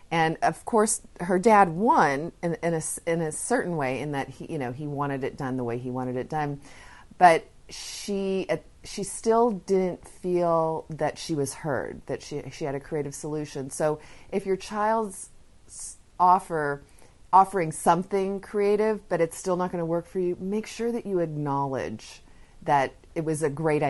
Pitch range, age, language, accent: 130-170 Hz, 40-59, English, American